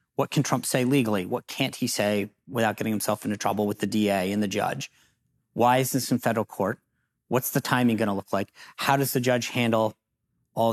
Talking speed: 220 wpm